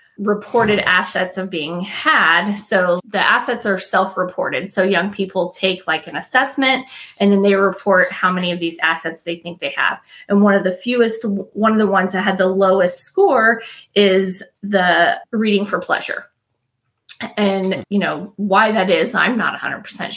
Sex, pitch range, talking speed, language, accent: female, 185-220 Hz, 175 wpm, English, American